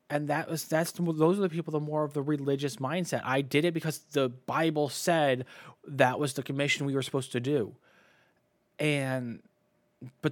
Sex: male